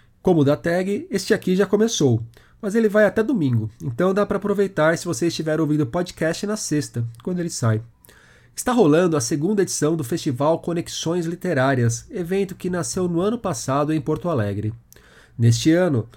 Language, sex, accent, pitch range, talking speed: Portuguese, male, Brazilian, 125-175 Hz, 175 wpm